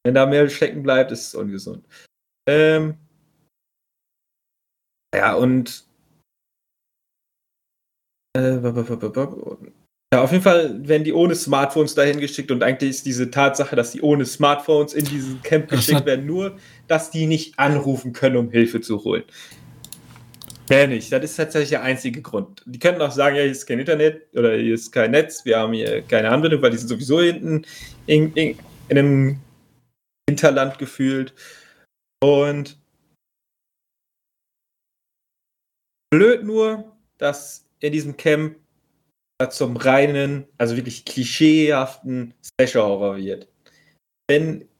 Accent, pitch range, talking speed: German, 130-155 Hz, 130 wpm